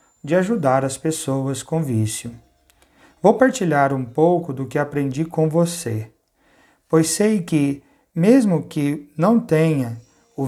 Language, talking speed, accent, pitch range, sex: Portuguese, 130 wpm, Brazilian, 130-180 Hz, male